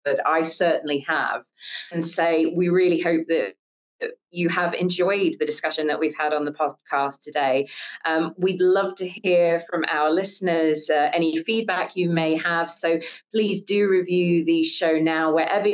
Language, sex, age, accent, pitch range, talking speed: English, female, 20-39, British, 160-195 Hz, 170 wpm